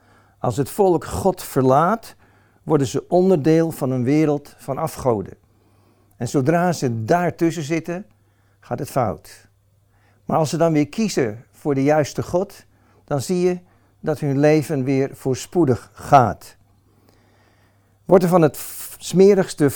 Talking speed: 135 wpm